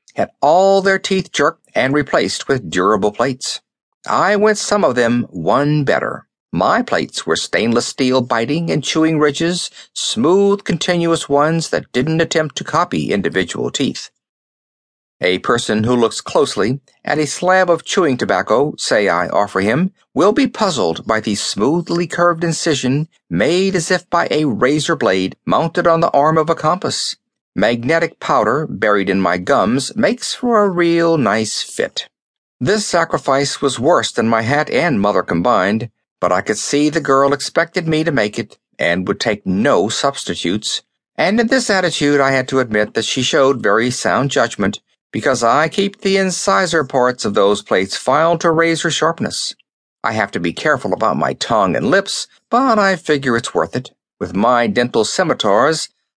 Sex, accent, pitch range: male, American, 130-175 Hz